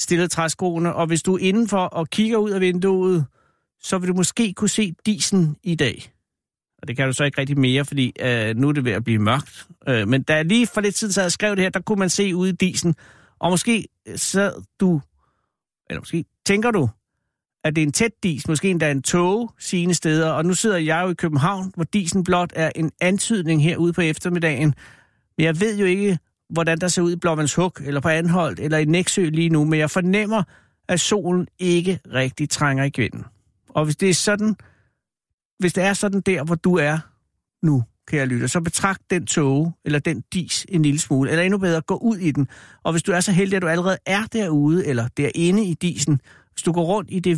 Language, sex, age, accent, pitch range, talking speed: Danish, male, 60-79, native, 155-190 Hz, 225 wpm